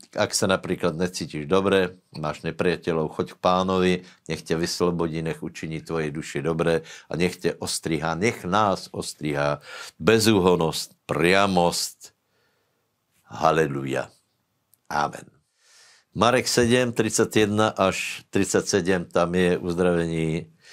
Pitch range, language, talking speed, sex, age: 85-95 Hz, Slovak, 105 wpm, male, 60-79